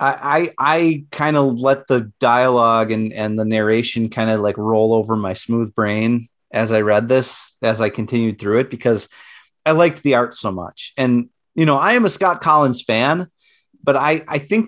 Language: English